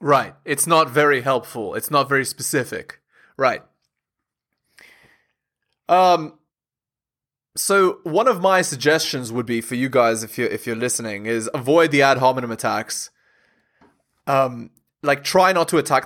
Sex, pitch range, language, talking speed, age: male, 130-185 Hz, English, 140 wpm, 20-39